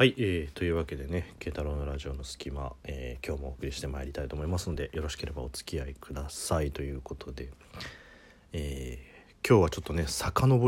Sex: male